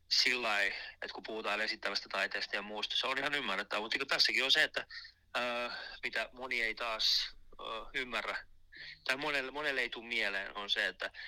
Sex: male